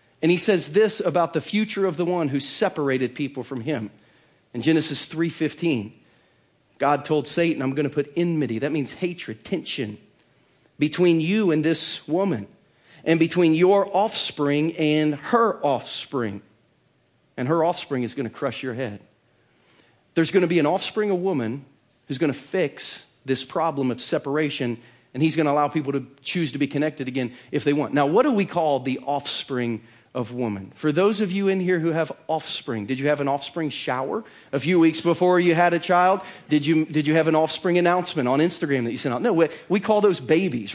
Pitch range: 135-175 Hz